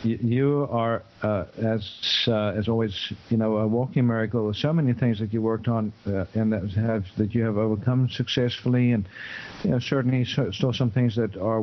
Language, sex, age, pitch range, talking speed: English, male, 50-69, 110-125 Hz, 195 wpm